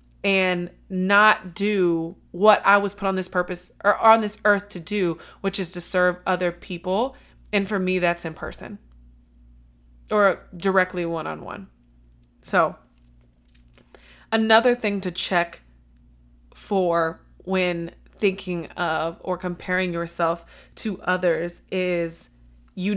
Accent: American